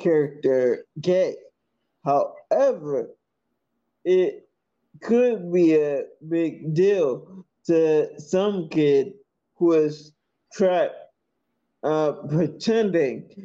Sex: male